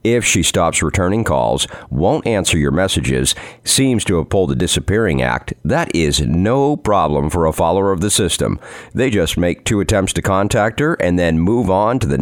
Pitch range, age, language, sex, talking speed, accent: 85-110 Hz, 50-69, English, male, 195 wpm, American